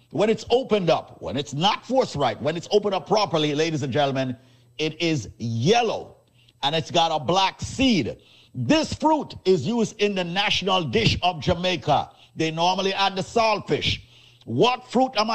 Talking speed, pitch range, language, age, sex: 175 wpm, 135-205 Hz, English, 50-69, male